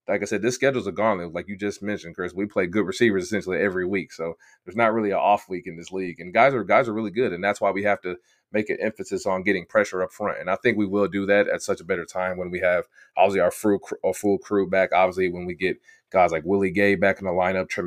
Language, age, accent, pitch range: English, 30-49, American, 95-105 Hz